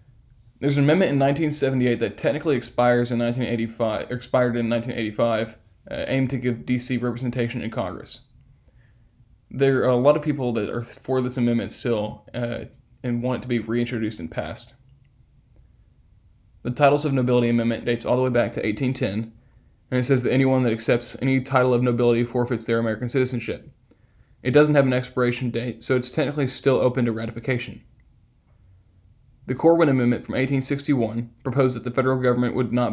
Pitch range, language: 115-130 Hz, English